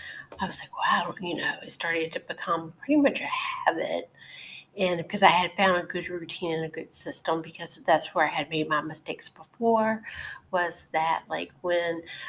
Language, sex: English, female